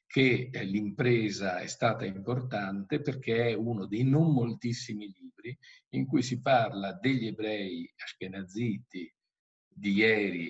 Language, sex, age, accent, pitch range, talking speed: Italian, male, 50-69, native, 105-130 Hz, 120 wpm